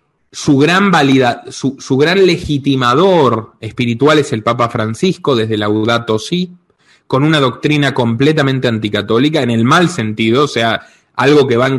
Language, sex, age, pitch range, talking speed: Spanish, male, 20-39, 115-165 Hz, 160 wpm